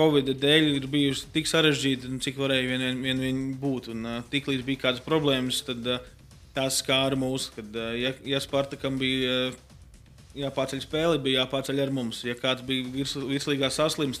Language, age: English, 20-39